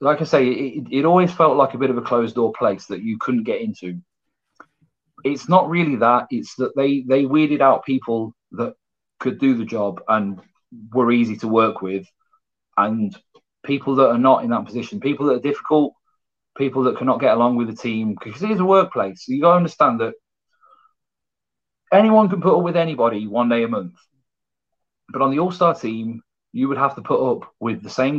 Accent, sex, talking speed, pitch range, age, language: British, male, 200 wpm, 120-165 Hz, 30-49, English